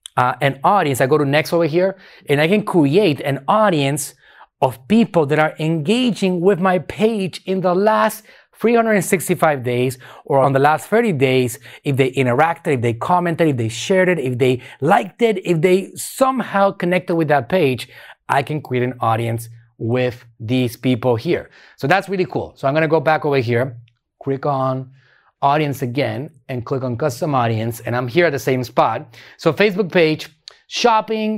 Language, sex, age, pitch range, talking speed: English, male, 30-49, 125-185 Hz, 185 wpm